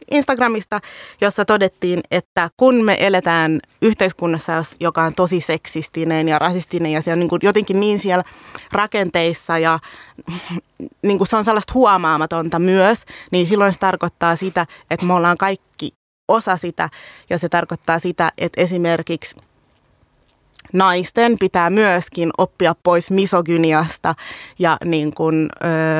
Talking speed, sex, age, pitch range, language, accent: 120 wpm, female, 20-39, 165-205 Hz, Finnish, native